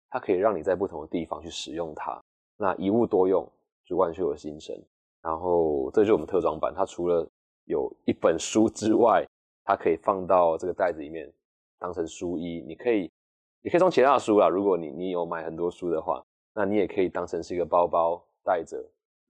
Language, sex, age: Chinese, male, 20-39